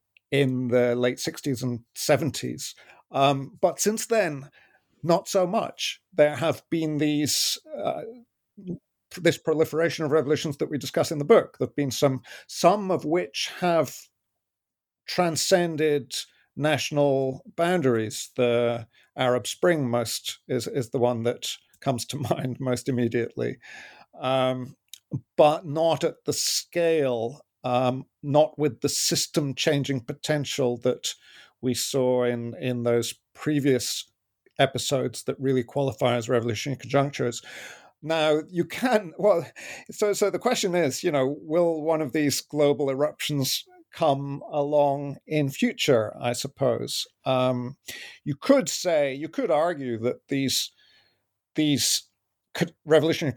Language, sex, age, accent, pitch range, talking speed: English, male, 50-69, British, 125-165 Hz, 125 wpm